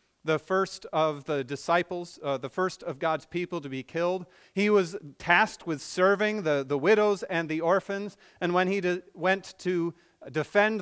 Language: English